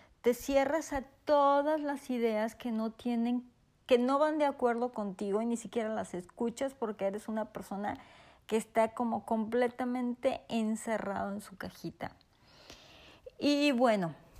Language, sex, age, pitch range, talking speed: Spanish, female, 40-59, 210-265 Hz, 140 wpm